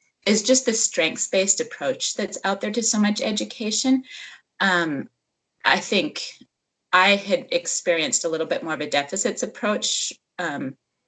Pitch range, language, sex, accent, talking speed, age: 160-215 Hz, English, female, American, 145 wpm, 30-49